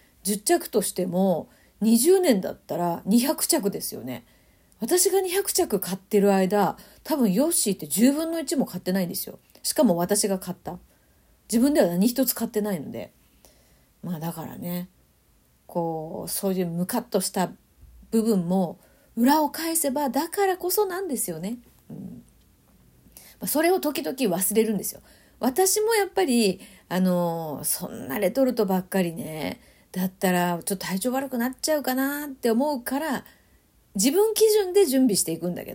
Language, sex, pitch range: Japanese, female, 185-285 Hz